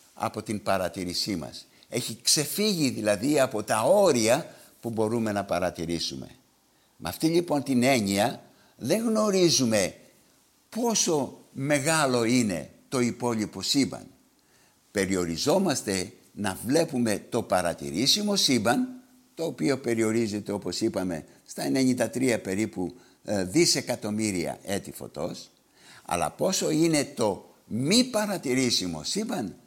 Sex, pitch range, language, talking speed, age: male, 90-140 Hz, Greek, 105 wpm, 60-79